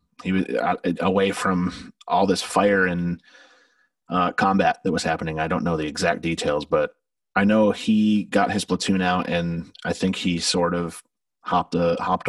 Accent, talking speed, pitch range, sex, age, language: American, 175 wpm, 85-100 Hz, male, 30-49, English